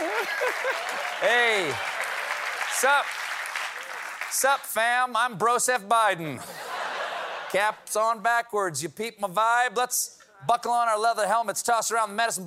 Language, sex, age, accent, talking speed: English, male, 40-59, American, 115 wpm